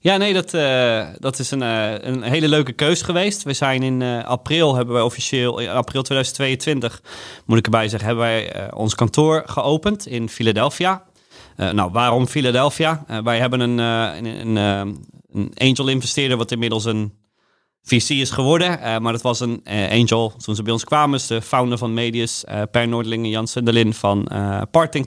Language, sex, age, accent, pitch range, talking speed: Dutch, male, 30-49, Dutch, 110-135 Hz, 180 wpm